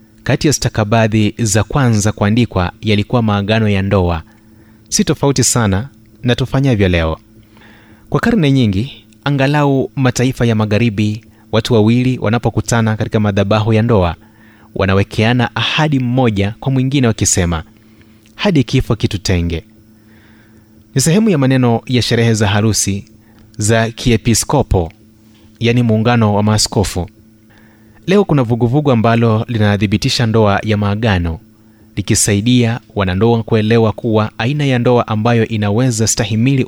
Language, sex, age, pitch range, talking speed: Swahili, male, 30-49, 110-120 Hz, 120 wpm